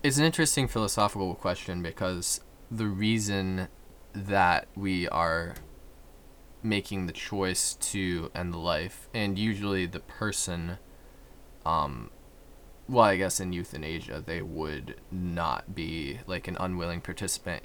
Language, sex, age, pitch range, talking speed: English, male, 20-39, 85-100 Hz, 120 wpm